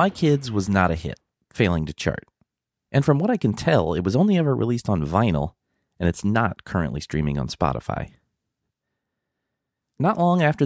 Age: 30-49